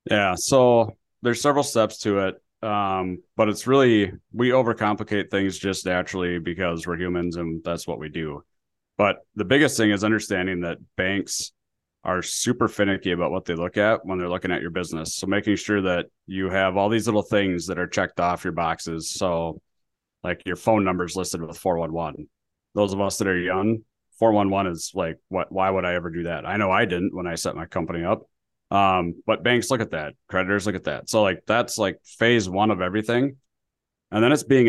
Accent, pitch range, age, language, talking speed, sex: American, 90-105 Hz, 30-49, English, 205 wpm, male